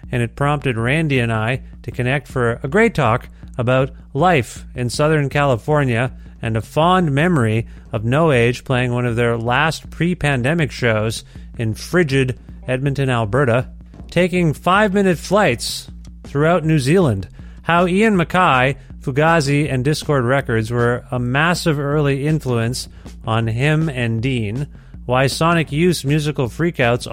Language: English